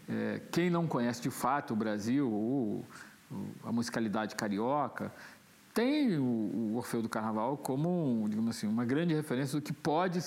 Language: Portuguese